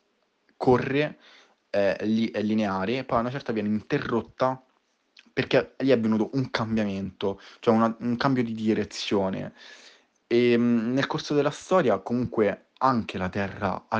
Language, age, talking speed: Italian, 20-39, 135 wpm